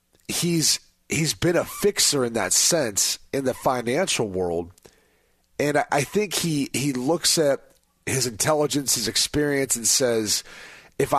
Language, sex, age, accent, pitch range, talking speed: English, male, 30-49, American, 125-170 Hz, 145 wpm